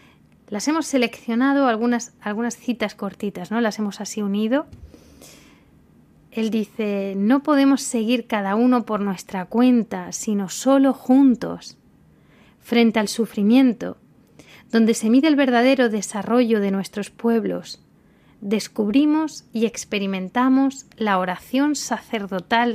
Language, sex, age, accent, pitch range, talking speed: Spanish, female, 20-39, Spanish, 200-250 Hz, 115 wpm